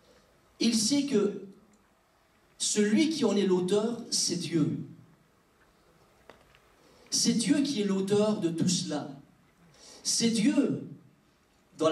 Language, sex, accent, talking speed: French, male, French, 105 wpm